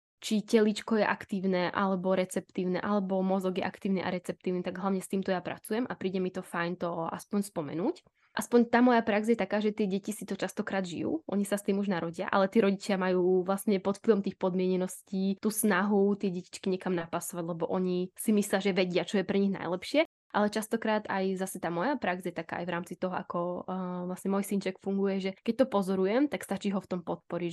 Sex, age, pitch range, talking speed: female, 10-29, 185-210 Hz, 220 wpm